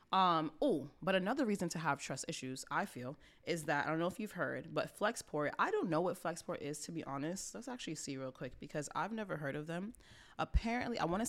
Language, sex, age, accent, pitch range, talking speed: English, female, 20-39, American, 150-185 Hz, 240 wpm